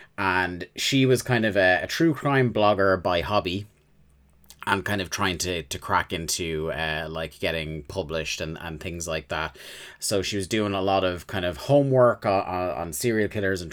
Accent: British